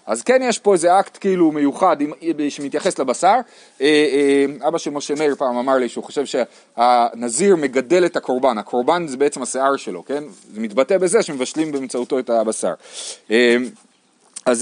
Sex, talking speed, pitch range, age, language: male, 150 wpm, 155-225 Hz, 30-49, Hebrew